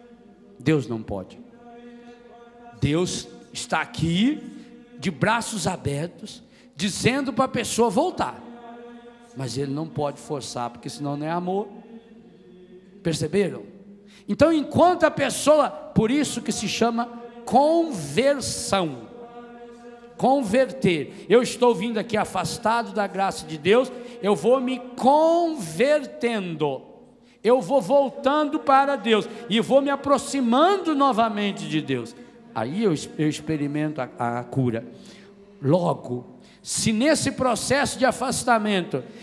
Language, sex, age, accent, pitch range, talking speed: Portuguese, male, 50-69, Brazilian, 180-245 Hz, 115 wpm